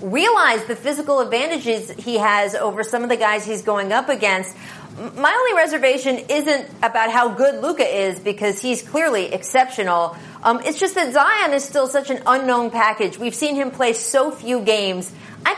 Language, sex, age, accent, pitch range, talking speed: English, female, 30-49, American, 220-280 Hz, 180 wpm